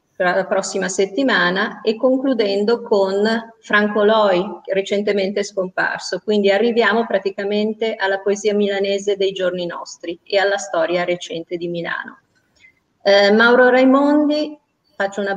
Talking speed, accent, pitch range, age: 115 wpm, native, 190-220 Hz, 30-49